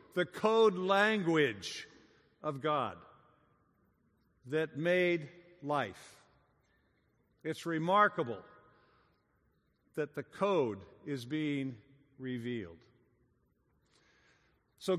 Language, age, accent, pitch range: English, 50-69, American, 165-210 Hz